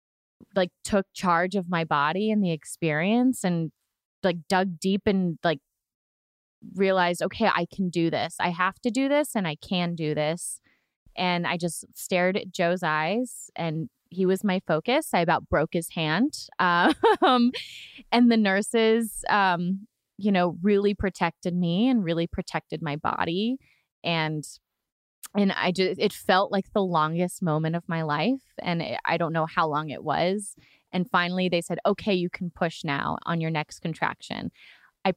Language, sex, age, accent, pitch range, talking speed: English, female, 20-39, American, 170-215 Hz, 165 wpm